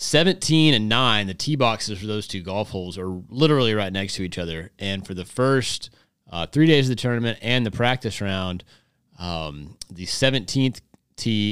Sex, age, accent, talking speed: male, 30-49, American, 190 wpm